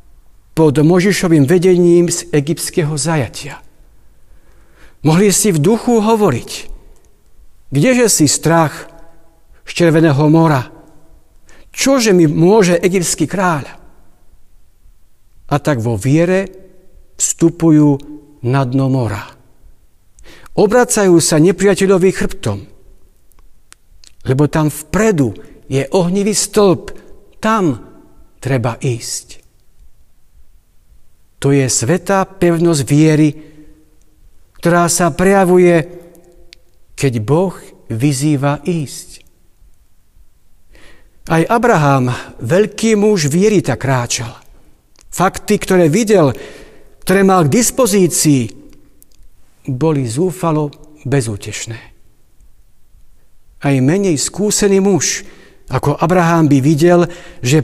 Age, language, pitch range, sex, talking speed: 60-79, Slovak, 125-185 Hz, male, 85 wpm